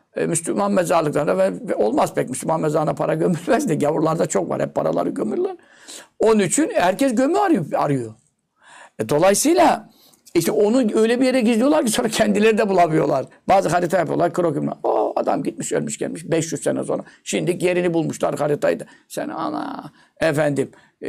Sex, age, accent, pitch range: male, 60-79, native, 185-250 Hz